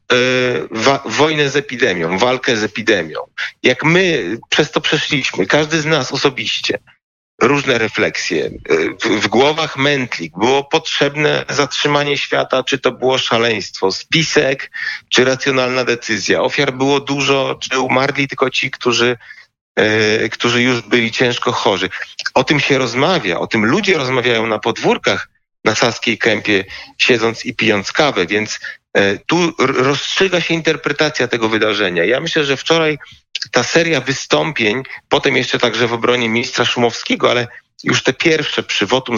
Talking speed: 135 wpm